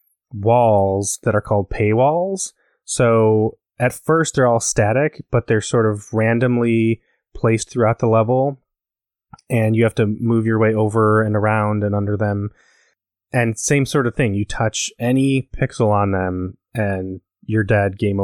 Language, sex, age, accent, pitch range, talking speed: English, male, 20-39, American, 105-130 Hz, 160 wpm